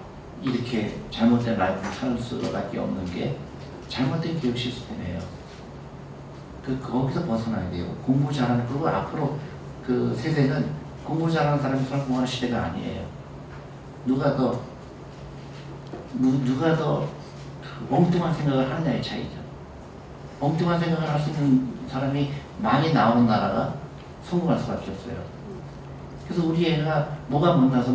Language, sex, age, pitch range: Korean, male, 40-59, 120-150 Hz